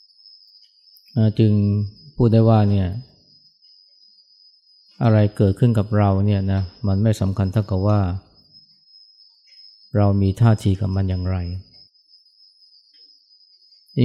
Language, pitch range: Thai, 95-115 Hz